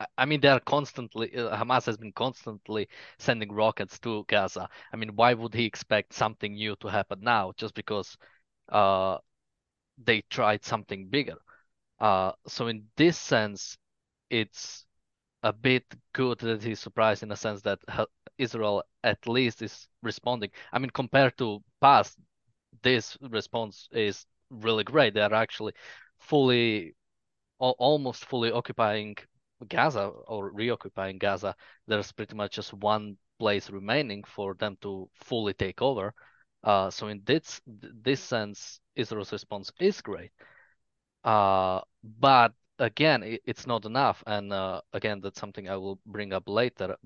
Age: 20-39